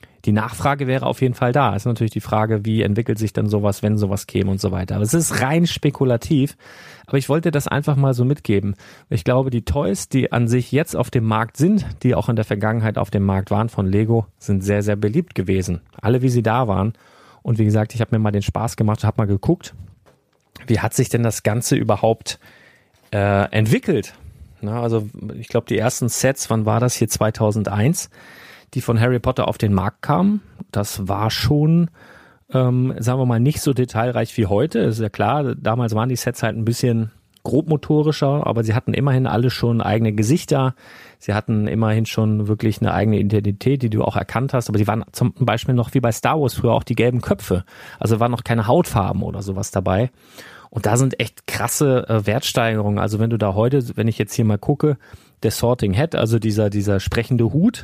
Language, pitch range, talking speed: German, 105-130 Hz, 210 wpm